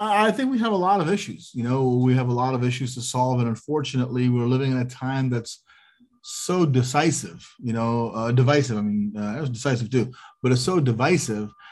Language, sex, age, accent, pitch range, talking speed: English, male, 30-49, American, 115-140 Hz, 220 wpm